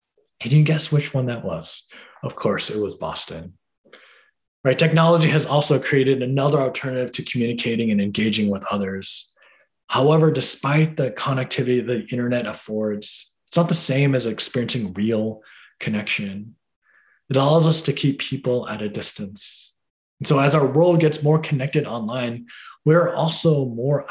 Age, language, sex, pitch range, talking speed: 20-39, English, male, 105-145 Hz, 150 wpm